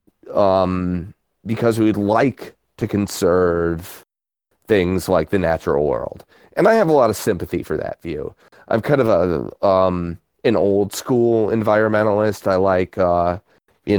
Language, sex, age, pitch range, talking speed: English, male, 30-49, 95-115 Hz, 145 wpm